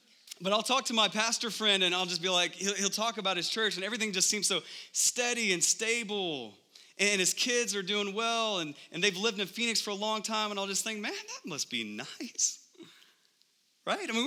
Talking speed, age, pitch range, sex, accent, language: 220 wpm, 30-49, 130-210 Hz, male, American, English